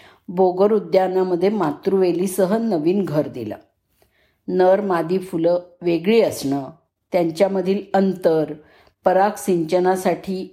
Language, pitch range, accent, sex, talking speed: Marathi, 175-210 Hz, native, female, 85 wpm